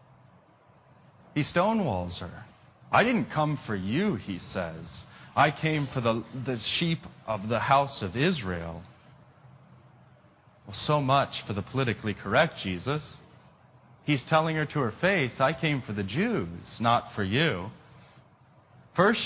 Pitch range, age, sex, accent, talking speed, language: 130-205 Hz, 30-49, male, American, 135 wpm, English